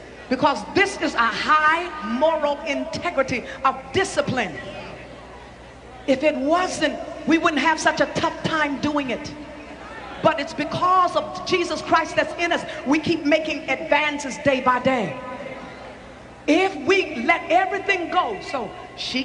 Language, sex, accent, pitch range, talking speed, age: English, female, American, 295-340 Hz, 135 wpm, 40-59